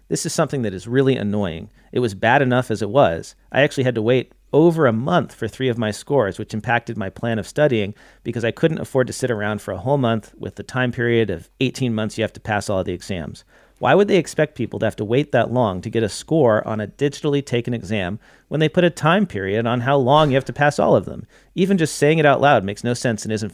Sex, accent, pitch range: male, American, 105-135 Hz